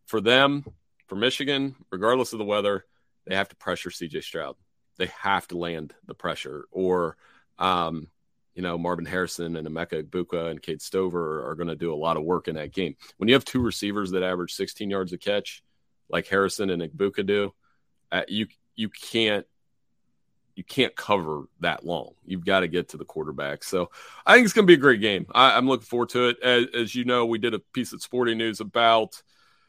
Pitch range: 95-125 Hz